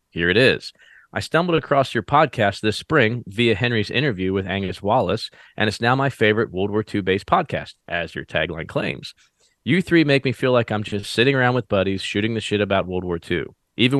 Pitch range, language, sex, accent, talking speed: 100-130 Hz, English, male, American, 210 wpm